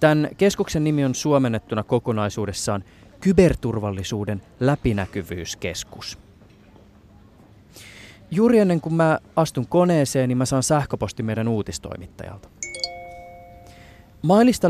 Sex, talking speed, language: male, 85 wpm, Finnish